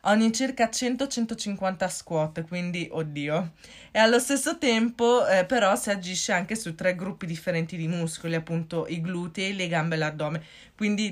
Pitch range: 175-210 Hz